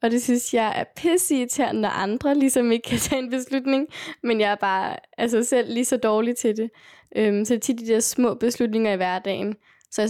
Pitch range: 195-235 Hz